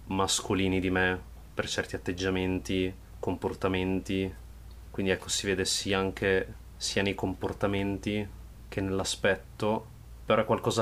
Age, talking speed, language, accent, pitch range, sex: 20-39, 115 wpm, Italian, native, 95-105 Hz, male